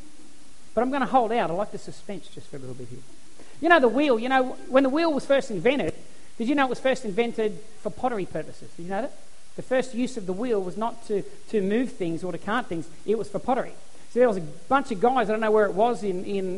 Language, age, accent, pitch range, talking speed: English, 40-59, Australian, 210-285 Hz, 280 wpm